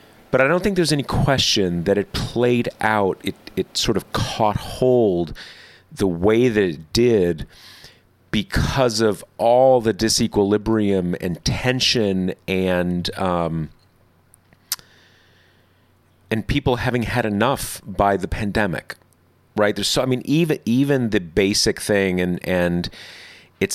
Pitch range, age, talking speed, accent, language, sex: 90-120 Hz, 30-49, 130 wpm, American, English, male